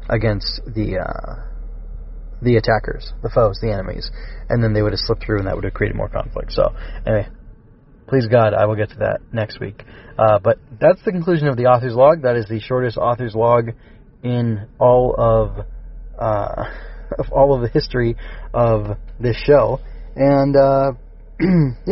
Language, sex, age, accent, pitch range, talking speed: English, male, 20-39, American, 105-125 Hz, 170 wpm